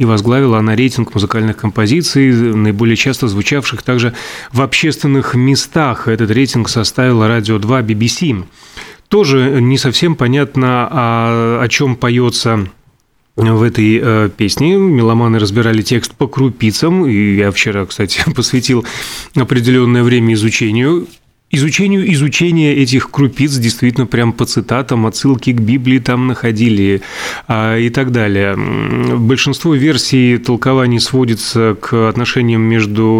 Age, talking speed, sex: 30-49, 115 wpm, male